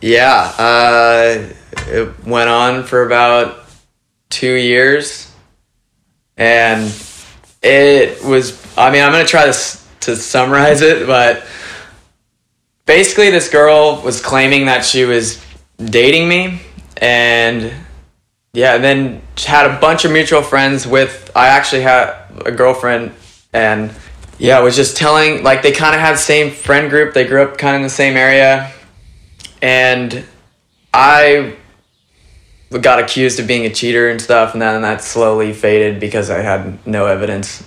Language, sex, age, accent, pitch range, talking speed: English, male, 20-39, American, 115-135 Hz, 145 wpm